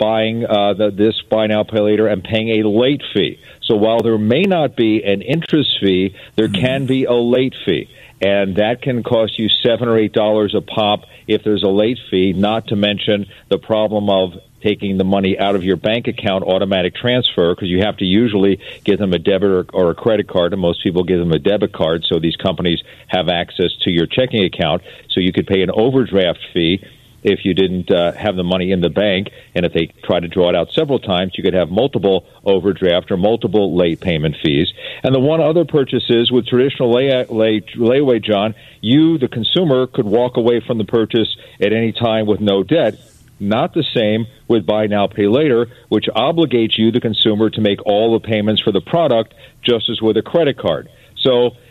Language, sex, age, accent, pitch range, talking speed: English, male, 50-69, American, 100-120 Hz, 210 wpm